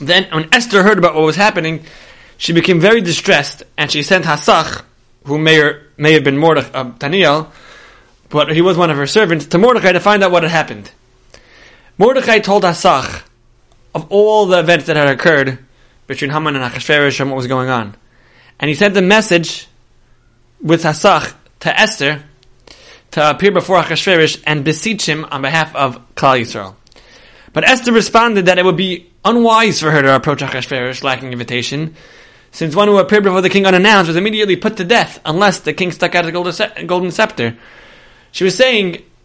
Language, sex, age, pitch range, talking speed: English, male, 20-39, 135-195 Hz, 180 wpm